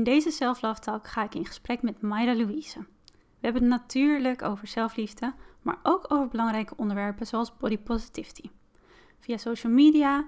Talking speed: 165 wpm